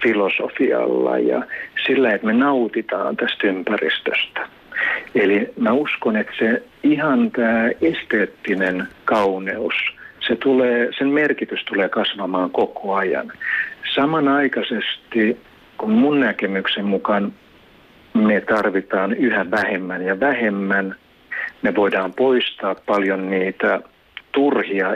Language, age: Finnish, 60-79